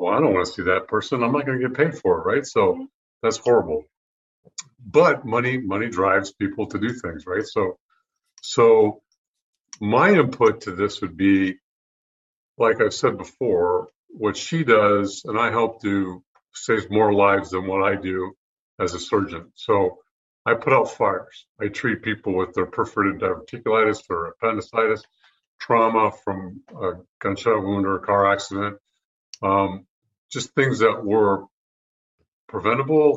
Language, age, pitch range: English, 50-69, 100-140 Hz